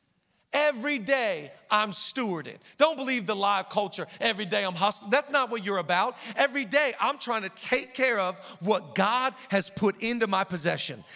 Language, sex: English, male